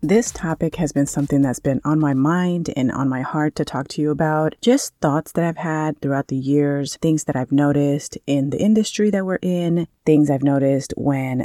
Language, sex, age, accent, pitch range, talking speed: English, female, 30-49, American, 140-170 Hz, 215 wpm